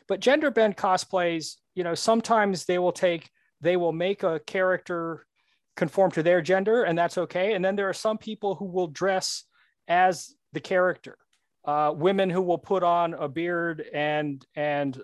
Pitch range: 155-195 Hz